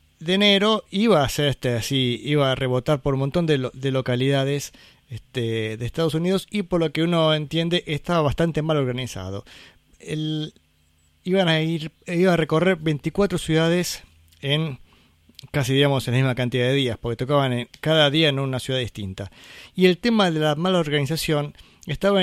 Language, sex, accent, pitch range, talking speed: Spanish, male, Argentinian, 125-165 Hz, 180 wpm